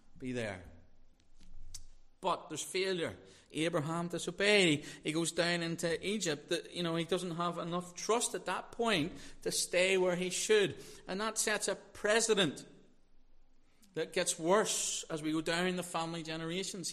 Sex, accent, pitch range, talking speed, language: male, British, 130-215 Hz, 150 wpm, English